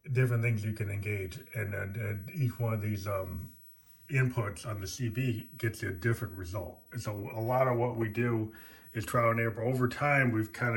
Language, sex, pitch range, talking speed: English, male, 105-120 Hz, 205 wpm